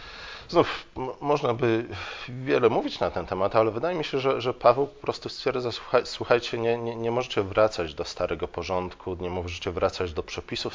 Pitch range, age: 90-115 Hz, 40-59